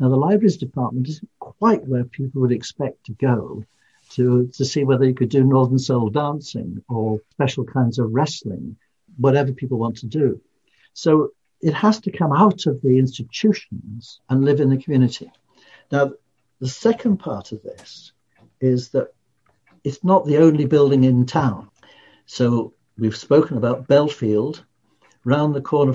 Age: 60-79